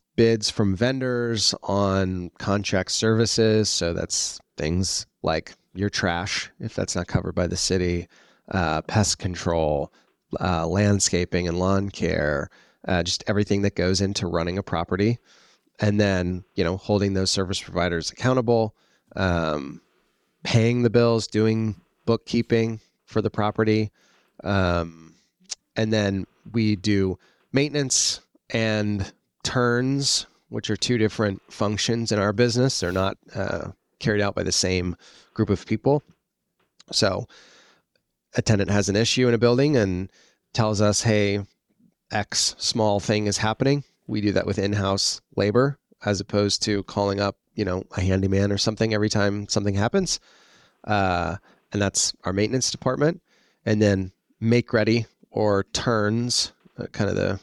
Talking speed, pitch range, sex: 140 wpm, 95-115 Hz, male